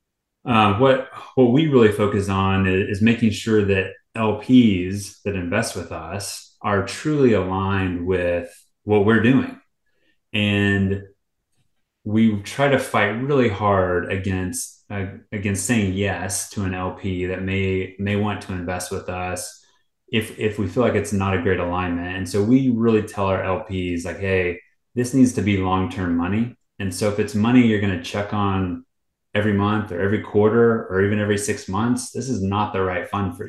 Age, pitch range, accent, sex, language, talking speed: 30-49, 95-115 Hz, American, male, English, 175 wpm